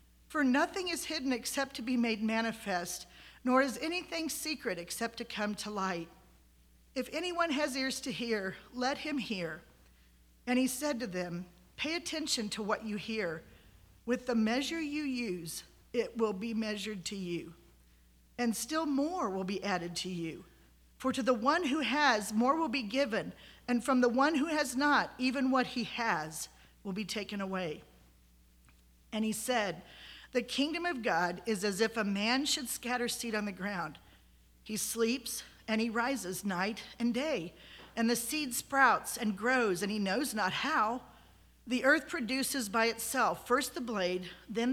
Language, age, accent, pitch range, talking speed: English, 50-69, American, 195-270 Hz, 170 wpm